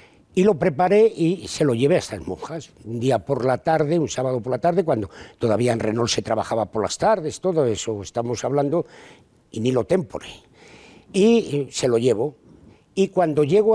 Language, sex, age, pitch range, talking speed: Spanish, male, 60-79, 120-170 Hz, 195 wpm